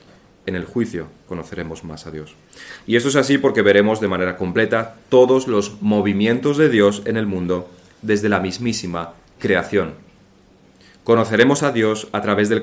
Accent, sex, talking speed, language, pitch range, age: Spanish, male, 160 wpm, Spanish, 95-110 Hz, 30-49